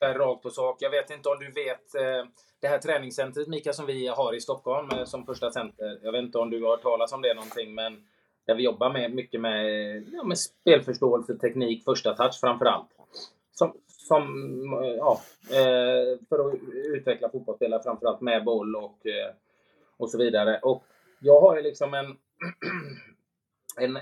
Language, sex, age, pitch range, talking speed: Swedish, male, 20-39, 120-155 Hz, 170 wpm